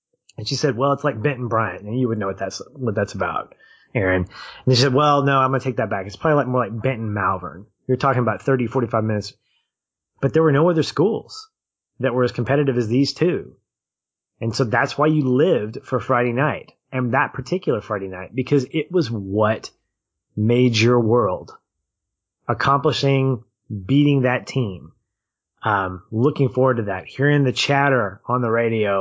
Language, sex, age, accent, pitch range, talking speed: English, male, 30-49, American, 110-140 Hz, 190 wpm